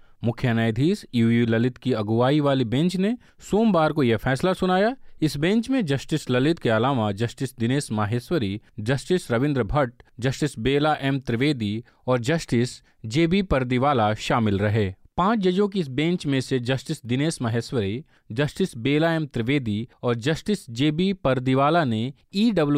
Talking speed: 150 wpm